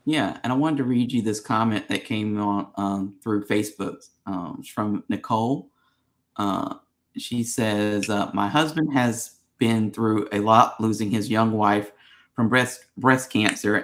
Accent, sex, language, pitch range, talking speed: American, male, English, 105-120 Hz, 160 wpm